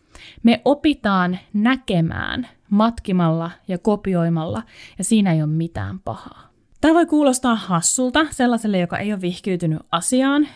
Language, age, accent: Finnish, 20-39, native